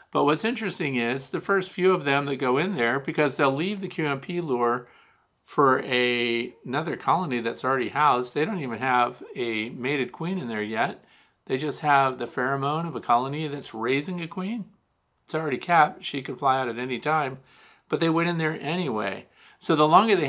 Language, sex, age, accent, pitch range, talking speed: English, male, 50-69, American, 120-150 Hz, 200 wpm